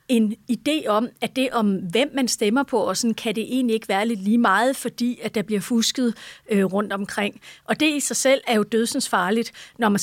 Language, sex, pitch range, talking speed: Danish, female, 210-245 Hz, 235 wpm